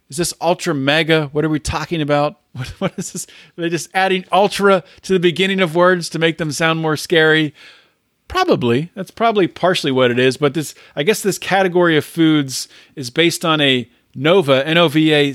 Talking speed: 195 wpm